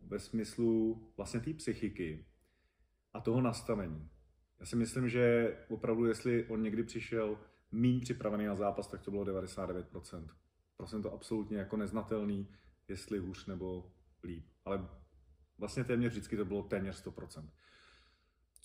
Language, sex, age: Czech, male, 30-49